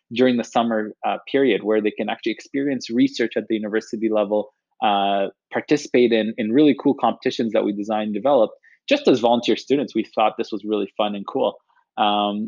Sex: male